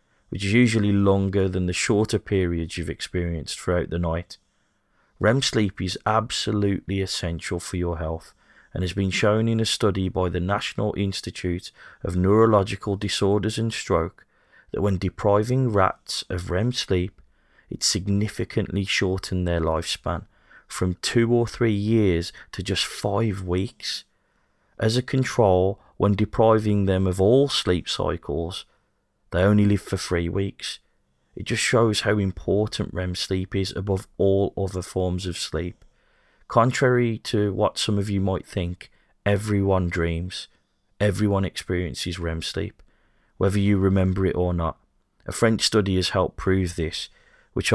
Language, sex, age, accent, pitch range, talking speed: English, male, 30-49, British, 90-105 Hz, 145 wpm